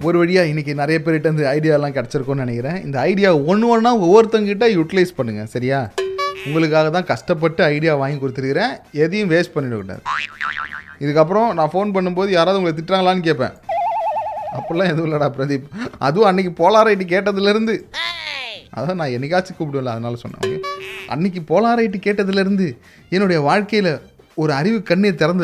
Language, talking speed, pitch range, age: Tamil, 135 wpm, 145-205 Hz, 30-49